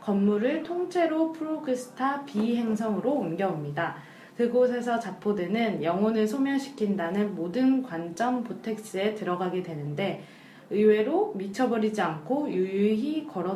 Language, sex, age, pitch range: Korean, female, 20-39, 180-240 Hz